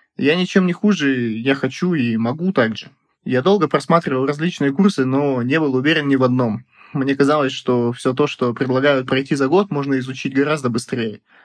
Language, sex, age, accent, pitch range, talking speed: Russian, male, 20-39, native, 130-150 Hz, 190 wpm